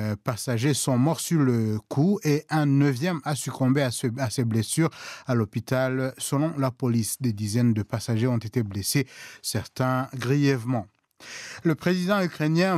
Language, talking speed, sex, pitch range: French, 145 wpm, male, 120-150 Hz